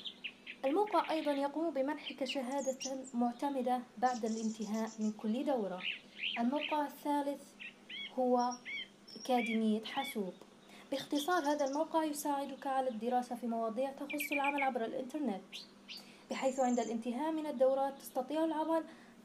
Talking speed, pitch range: 110 wpm, 225-275 Hz